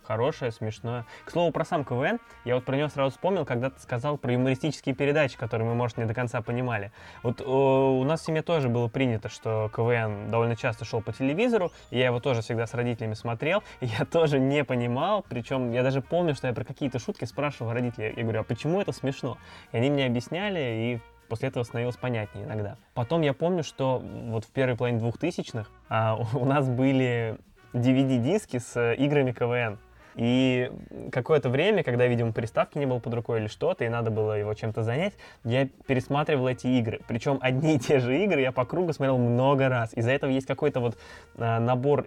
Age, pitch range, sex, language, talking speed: 20-39, 115-135 Hz, male, Russian, 190 wpm